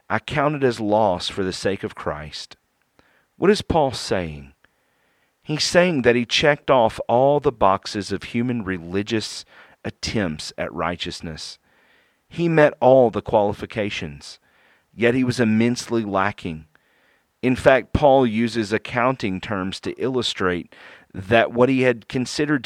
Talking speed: 140 wpm